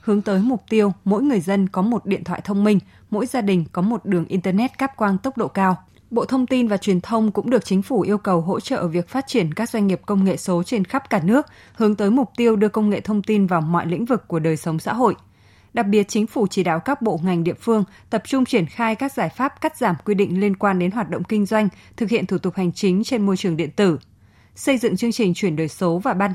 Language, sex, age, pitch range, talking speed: Vietnamese, female, 20-39, 185-230 Hz, 270 wpm